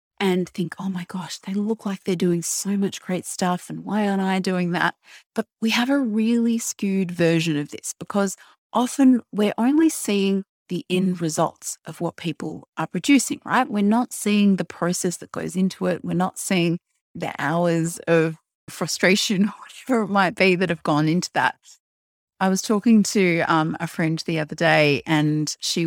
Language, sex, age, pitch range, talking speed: English, female, 30-49, 165-205 Hz, 190 wpm